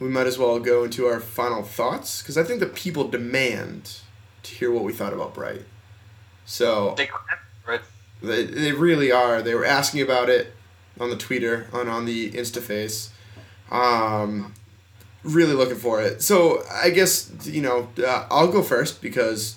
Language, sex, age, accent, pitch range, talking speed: English, male, 20-39, American, 110-145 Hz, 165 wpm